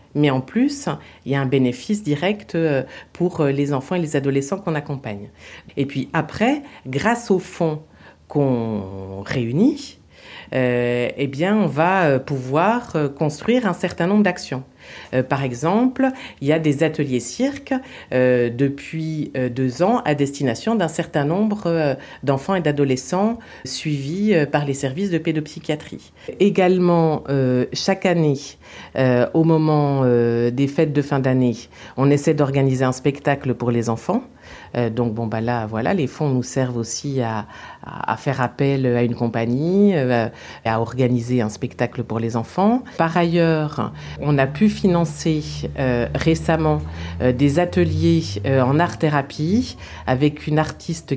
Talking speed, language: 150 wpm, French